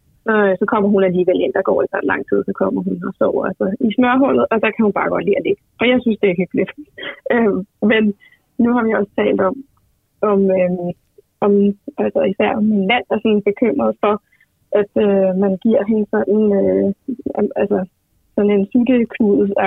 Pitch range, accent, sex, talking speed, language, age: 195-230 Hz, native, female, 190 wpm, Danish, 30-49